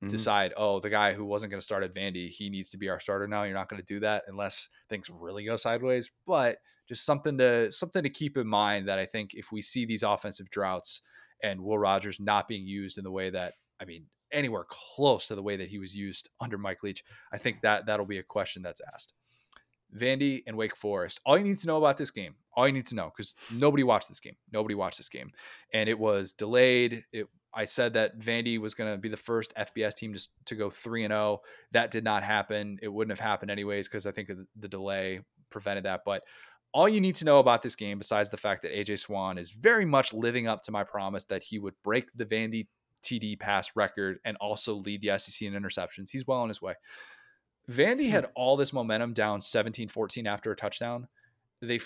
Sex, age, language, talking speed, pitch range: male, 20-39, English, 230 wpm, 100-120 Hz